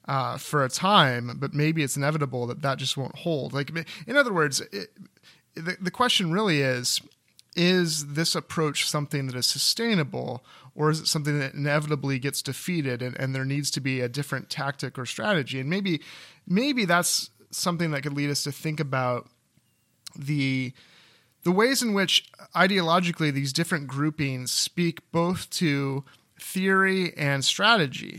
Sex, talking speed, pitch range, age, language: male, 160 wpm, 135-170 Hz, 30-49, English